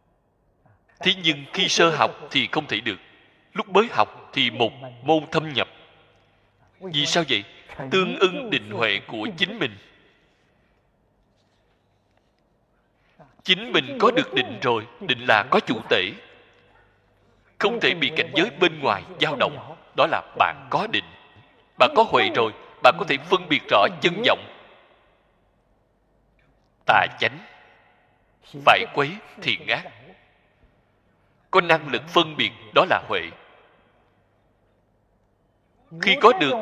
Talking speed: 135 wpm